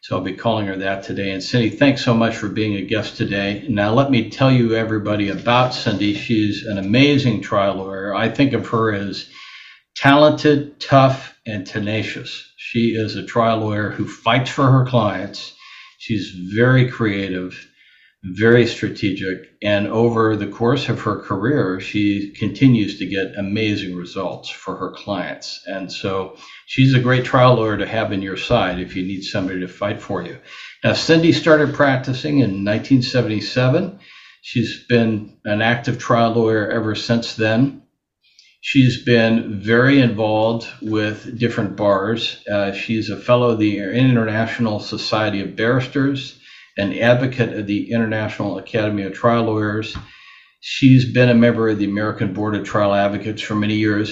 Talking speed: 160 wpm